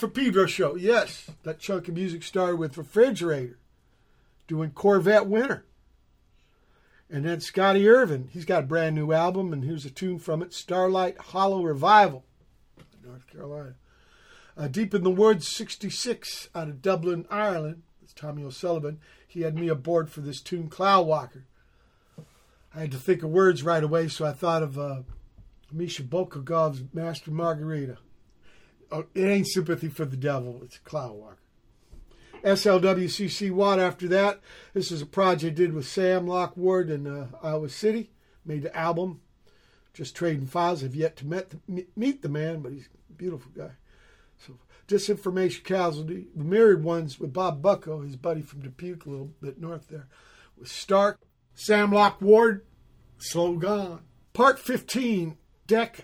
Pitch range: 150-190 Hz